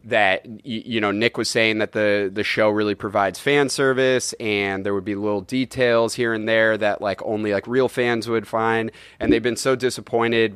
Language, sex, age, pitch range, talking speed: English, male, 30-49, 105-120 Hz, 205 wpm